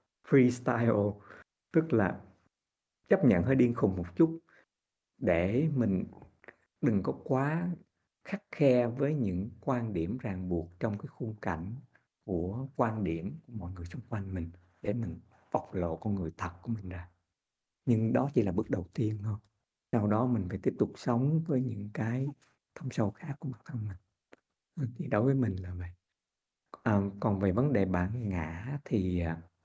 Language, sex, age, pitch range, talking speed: Vietnamese, male, 60-79, 95-130 Hz, 170 wpm